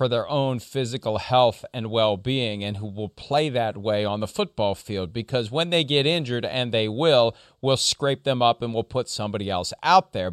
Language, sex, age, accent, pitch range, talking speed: English, male, 40-59, American, 110-140 Hz, 210 wpm